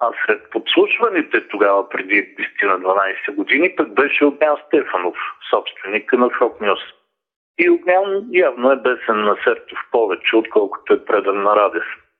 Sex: male